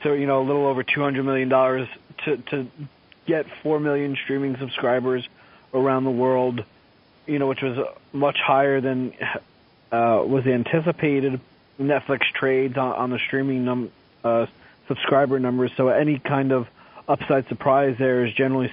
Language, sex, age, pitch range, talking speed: English, male, 30-49, 130-140 Hz, 150 wpm